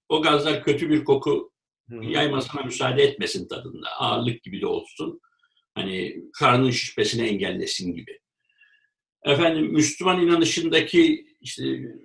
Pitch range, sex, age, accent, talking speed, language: 135-215 Hz, male, 60-79, native, 110 wpm, Turkish